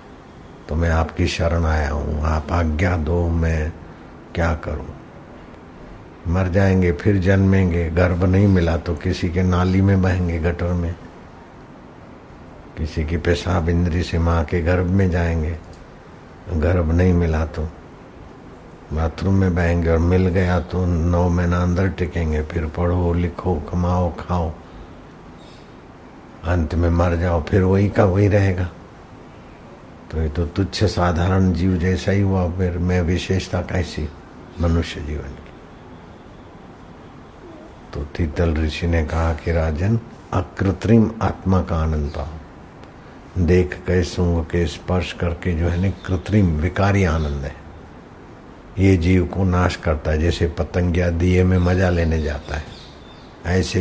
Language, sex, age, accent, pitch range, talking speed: Hindi, male, 60-79, native, 80-90 Hz, 125 wpm